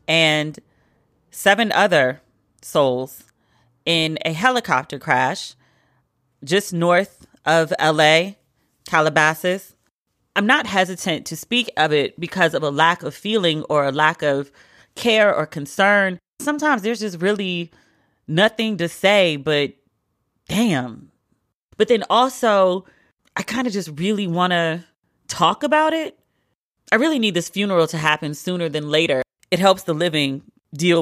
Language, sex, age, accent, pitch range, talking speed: English, female, 30-49, American, 145-185 Hz, 135 wpm